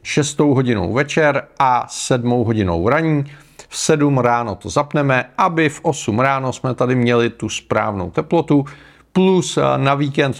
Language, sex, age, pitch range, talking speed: Czech, male, 40-59, 115-150 Hz, 145 wpm